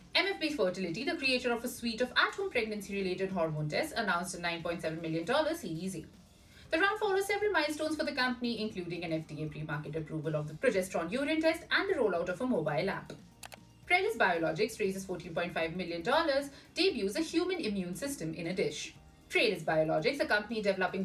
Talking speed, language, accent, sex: 170 wpm, English, Indian, female